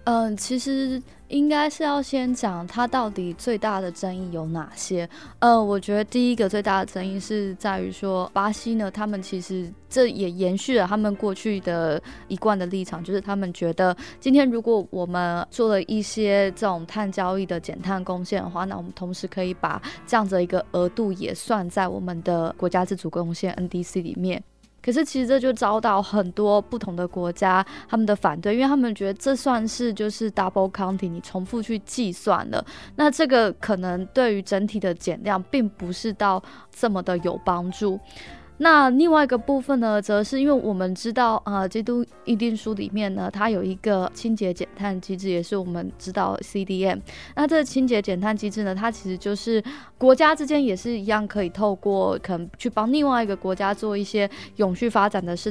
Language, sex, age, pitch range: Chinese, female, 20-39, 185-230 Hz